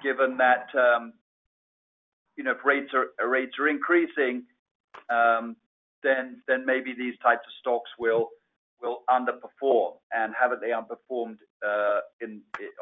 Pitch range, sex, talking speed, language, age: 125-175 Hz, male, 125 wpm, English, 50-69